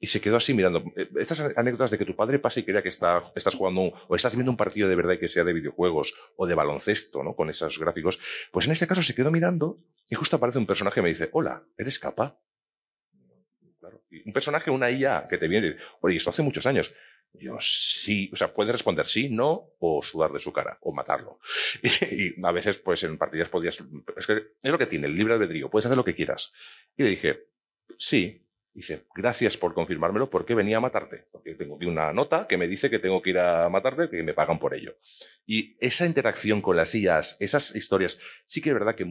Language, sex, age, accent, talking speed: Spanish, male, 40-59, Spanish, 235 wpm